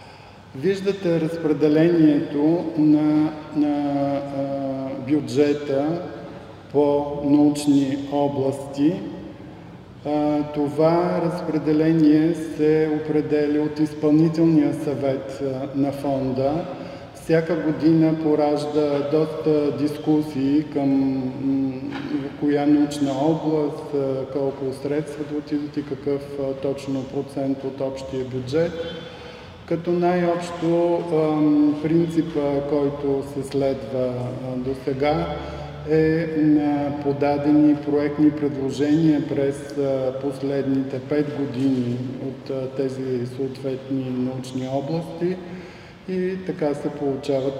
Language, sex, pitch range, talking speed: Bulgarian, male, 135-150 Hz, 85 wpm